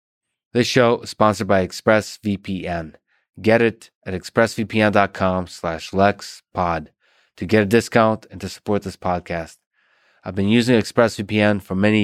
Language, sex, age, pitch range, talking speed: English, male, 20-39, 95-110 Hz, 135 wpm